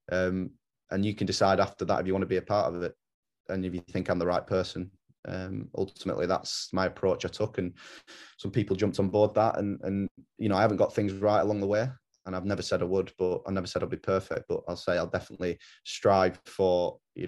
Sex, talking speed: male, 250 wpm